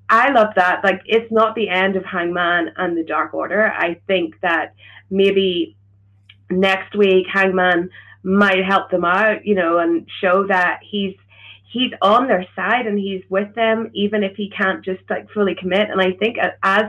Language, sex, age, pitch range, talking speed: English, female, 20-39, 175-205 Hz, 180 wpm